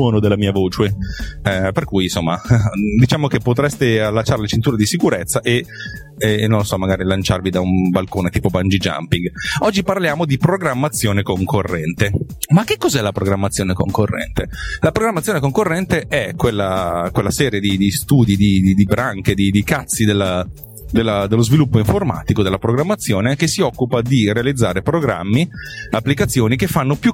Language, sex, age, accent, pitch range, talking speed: Italian, male, 30-49, native, 95-130 Hz, 160 wpm